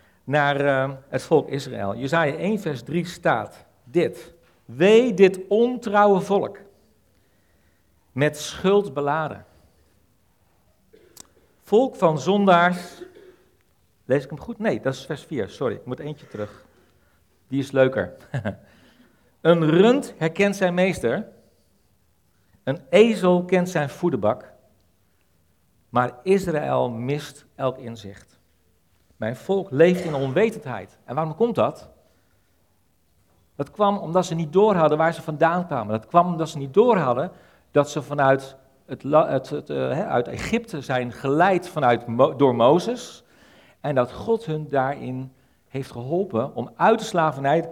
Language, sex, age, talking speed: Dutch, male, 50-69, 135 wpm